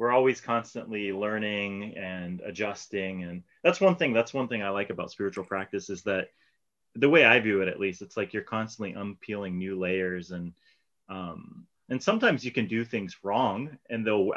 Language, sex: English, male